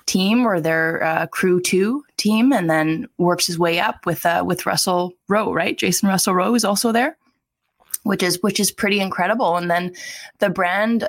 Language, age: English, 20-39